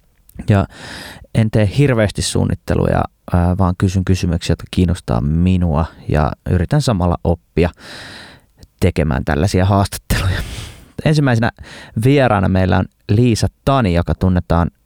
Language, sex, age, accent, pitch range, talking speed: Finnish, male, 20-39, native, 85-105 Hz, 105 wpm